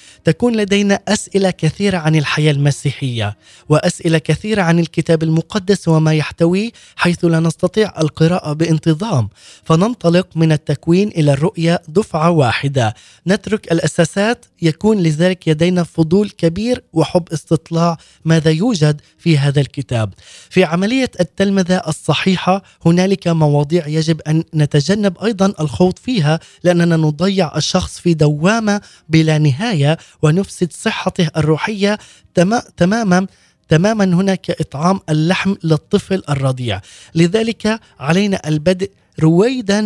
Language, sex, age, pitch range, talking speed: Arabic, male, 20-39, 155-195 Hz, 110 wpm